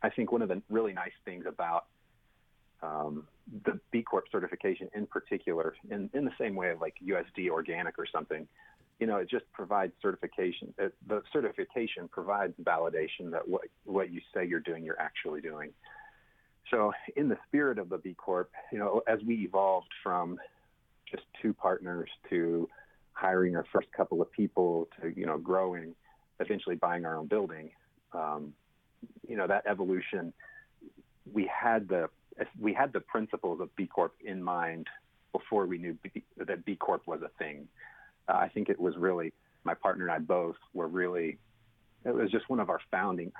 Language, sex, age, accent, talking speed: English, male, 40-59, American, 175 wpm